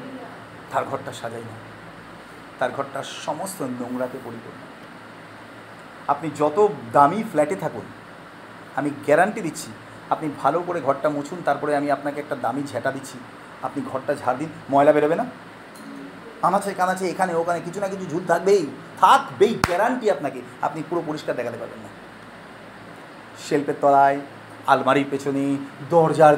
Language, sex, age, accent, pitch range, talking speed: Bengali, male, 40-59, native, 135-170 Hz, 135 wpm